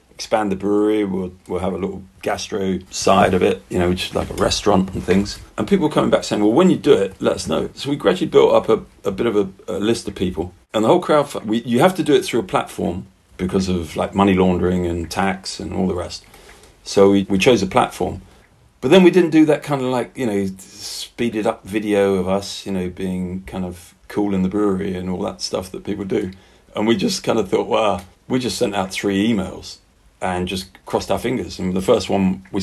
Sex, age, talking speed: male, 30-49, 245 wpm